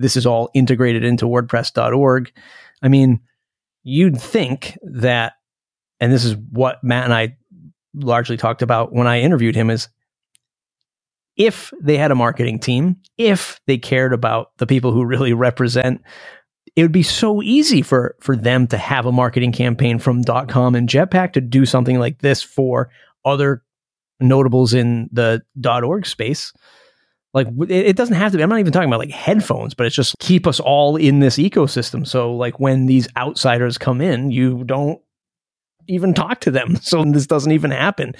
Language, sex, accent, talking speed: English, male, American, 175 wpm